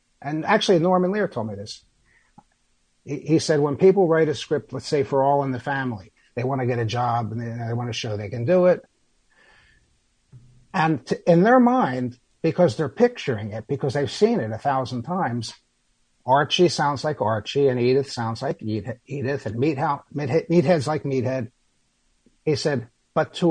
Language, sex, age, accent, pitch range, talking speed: English, male, 60-79, American, 125-160 Hz, 180 wpm